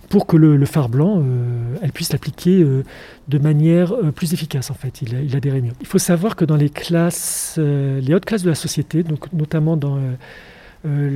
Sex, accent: male, French